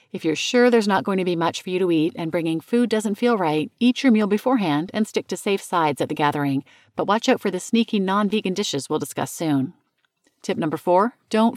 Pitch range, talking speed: 155-215 Hz, 240 wpm